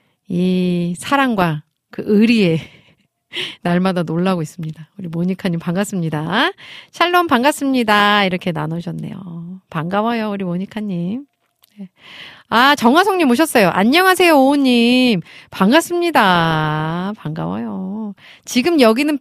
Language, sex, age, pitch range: Korean, female, 40-59, 170-245 Hz